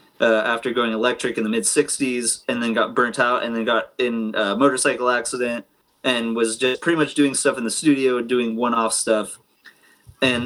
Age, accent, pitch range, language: 20-39, American, 115-130 Hz, English